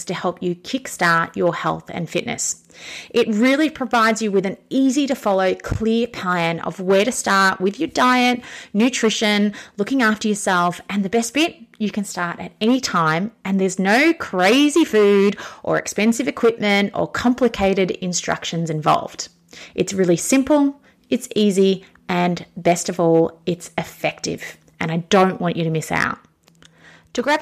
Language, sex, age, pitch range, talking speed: English, female, 30-49, 180-240 Hz, 160 wpm